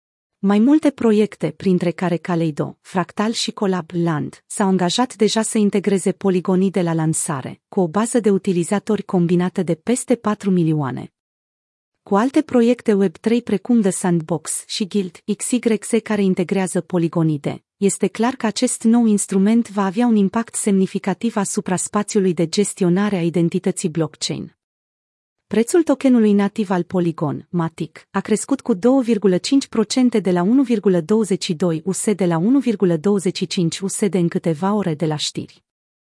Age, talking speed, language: 30-49, 135 wpm, Romanian